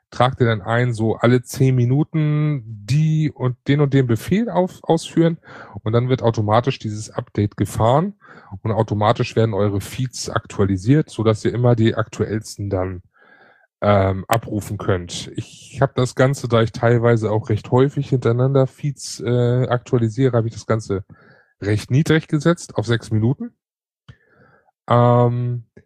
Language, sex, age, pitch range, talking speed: German, male, 20-39, 110-135 Hz, 150 wpm